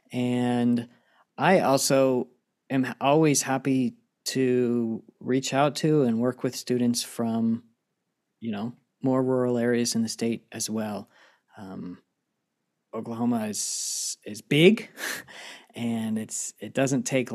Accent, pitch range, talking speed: American, 110-135 Hz, 120 wpm